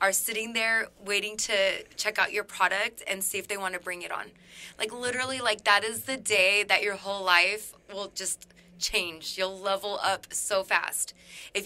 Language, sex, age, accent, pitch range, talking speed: English, female, 20-39, American, 195-235 Hz, 195 wpm